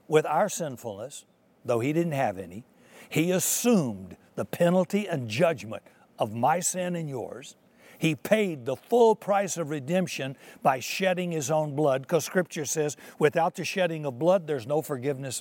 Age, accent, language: 60-79, American, English